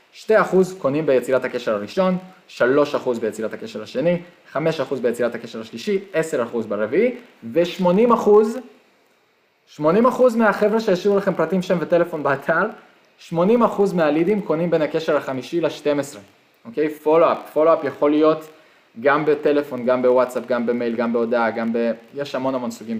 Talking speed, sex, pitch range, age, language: 150 wpm, male, 120-185 Hz, 20-39, Hebrew